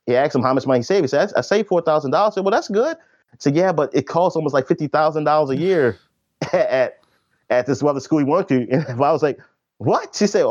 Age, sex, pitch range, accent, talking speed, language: 30-49, male, 140-190 Hz, American, 245 wpm, English